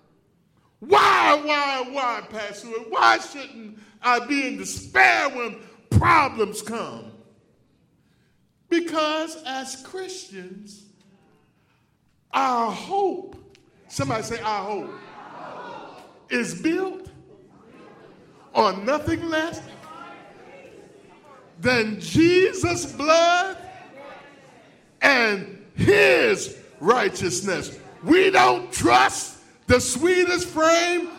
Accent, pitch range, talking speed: American, 225-350 Hz, 75 wpm